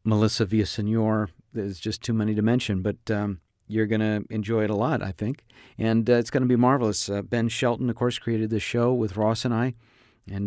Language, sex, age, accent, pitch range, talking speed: English, male, 50-69, American, 105-125 Hz, 225 wpm